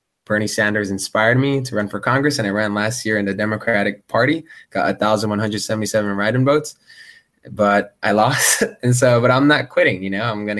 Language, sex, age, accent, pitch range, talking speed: English, male, 20-39, American, 100-115 Hz, 195 wpm